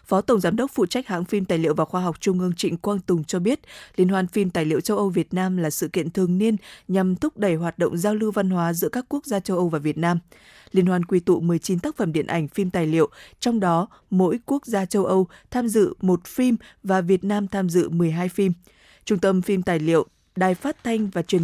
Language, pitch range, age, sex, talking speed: Vietnamese, 175-205 Hz, 20-39, female, 260 wpm